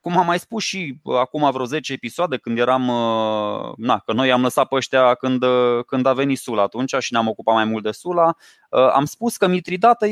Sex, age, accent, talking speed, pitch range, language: male, 20-39, native, 210 wpm, 130-170 Hz, Romanian